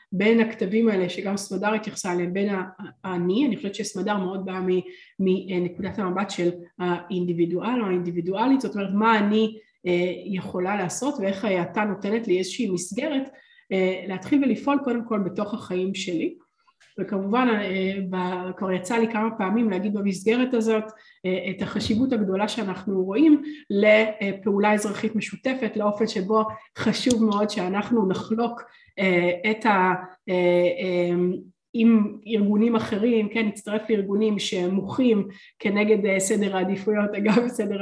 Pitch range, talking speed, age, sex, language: 185-225 Hz, 120 wpm, 30-49, female, Hebrew